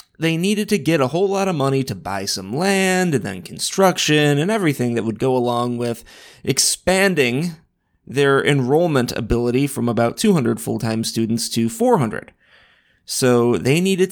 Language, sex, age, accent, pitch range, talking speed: English, male, 30-49, American, 120-175 Hz, 155 wpm